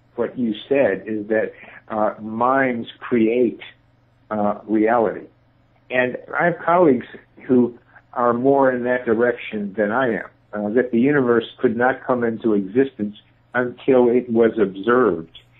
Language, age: English, 60-79